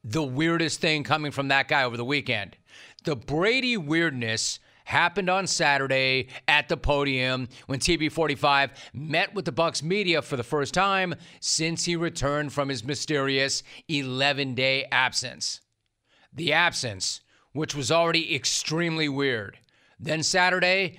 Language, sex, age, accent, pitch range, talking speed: English, male, 40-59, American, 135-170 Hz, 135 wpm